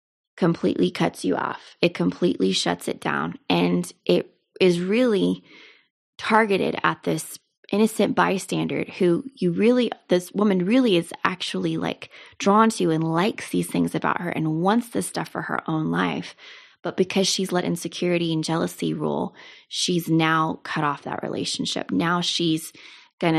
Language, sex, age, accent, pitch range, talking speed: English, female, 20-39, American, 155-195 Hz, 155 wpm